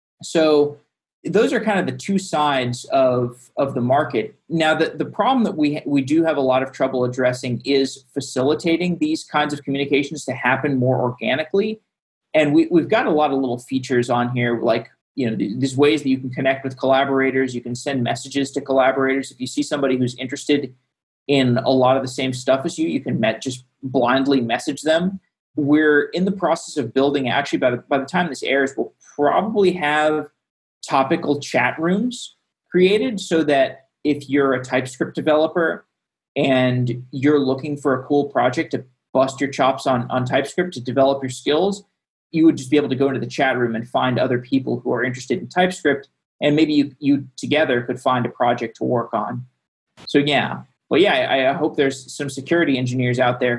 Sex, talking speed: male, 200 wpm